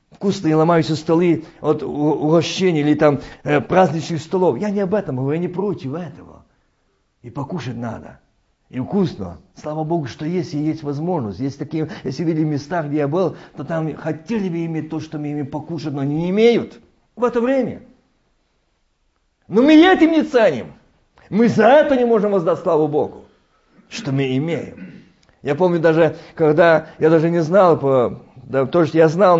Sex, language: male, Russian